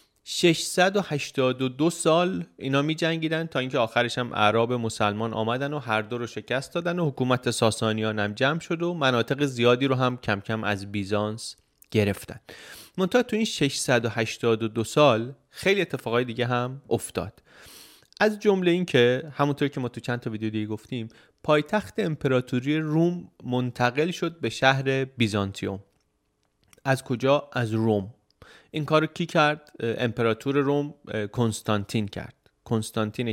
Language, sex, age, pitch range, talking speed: Persian, male, 30-49, 110-145 Hz, 140 wpm